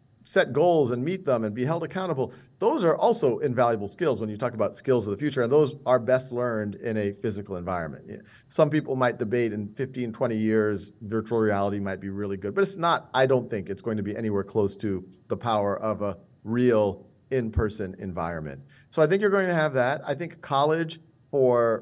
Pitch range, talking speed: 110-155 Hz, 210 wpm